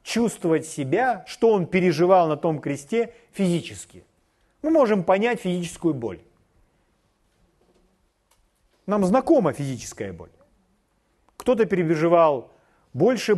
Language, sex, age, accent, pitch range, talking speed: Russian, male, 40-59, native, 150-215 Hz, 95 wpm